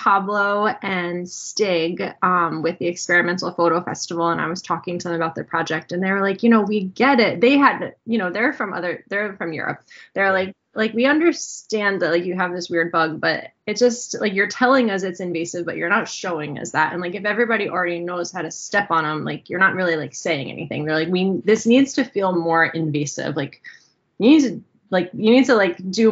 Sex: female